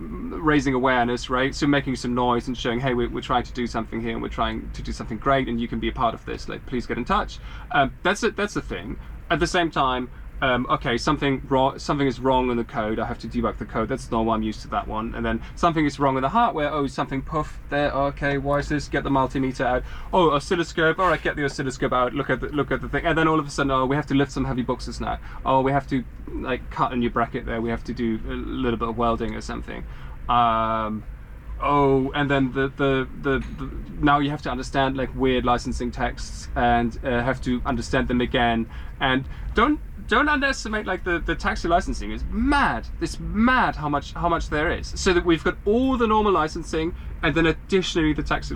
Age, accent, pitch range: 20-39, British, 120-150 Hz